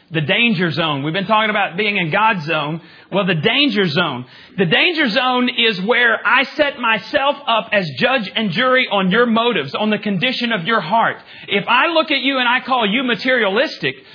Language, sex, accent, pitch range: English, male, American, 180-255 Hz